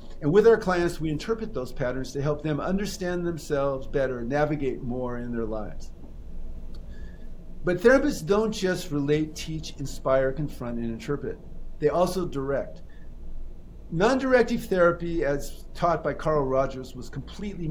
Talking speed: 140 wpm